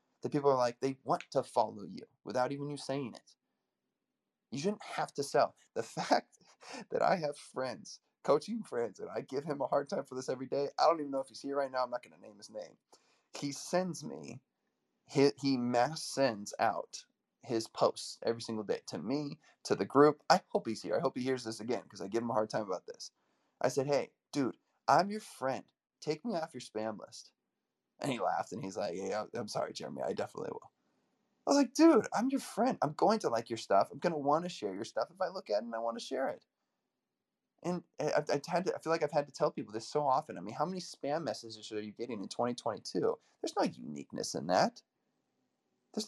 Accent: American